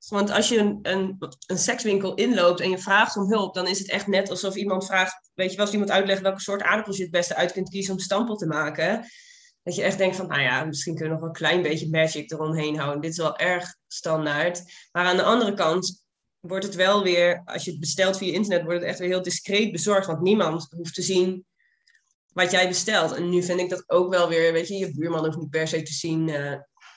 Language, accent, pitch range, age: Dutch, Dutch, 165-190 Hz, 20-39